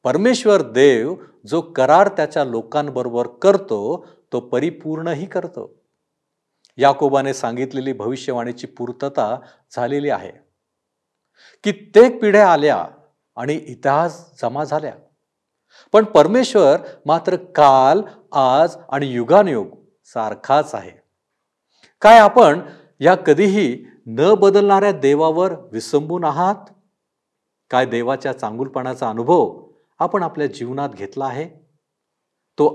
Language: Marathi